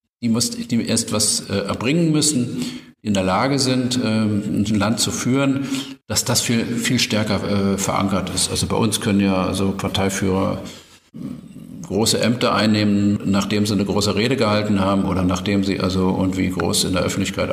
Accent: German